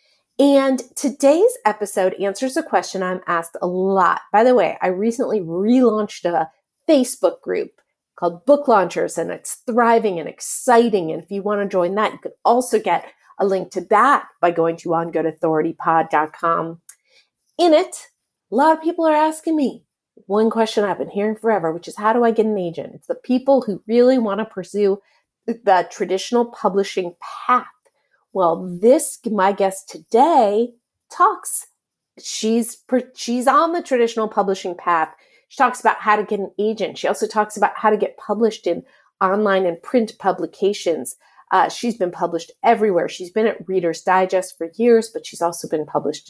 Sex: female